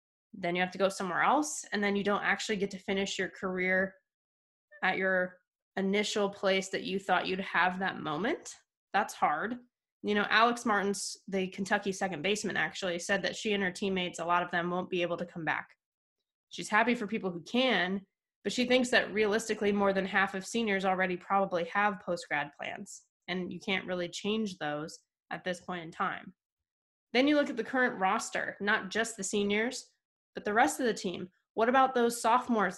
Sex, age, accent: female, 20-39, American